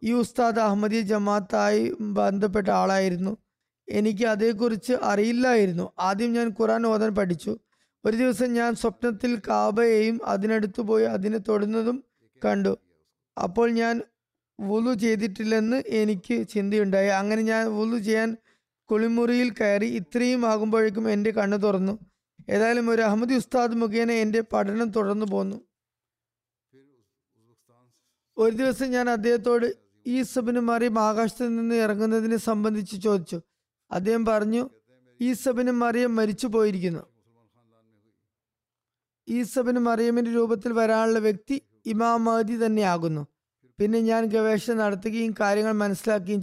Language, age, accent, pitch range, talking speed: Malayalam, 20-39, native, 200-230 Hz, 105 wpm